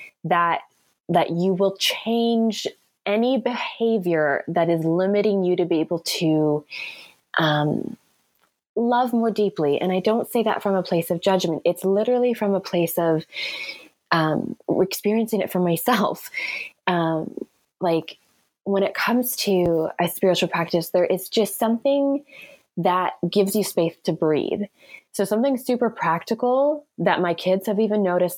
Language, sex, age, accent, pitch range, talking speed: English, female, 20-39, American, 165-210 Hz, 145 wpm